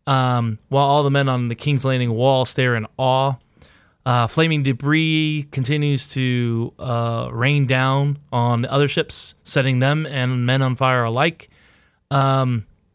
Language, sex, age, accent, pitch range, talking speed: English, male, 20-39, American, 120-145 Hz, 155 wpm